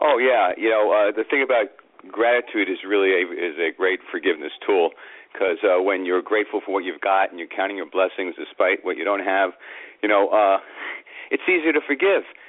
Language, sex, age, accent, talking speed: English, male, 40-59, American, 195 wpm